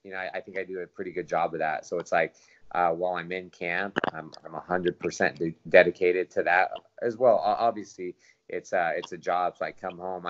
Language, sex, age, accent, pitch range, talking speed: English, male, 20-39, American, 85-95 Hz, 235 wpm